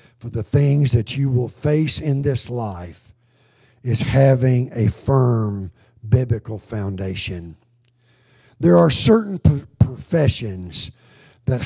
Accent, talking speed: American, 110 wpm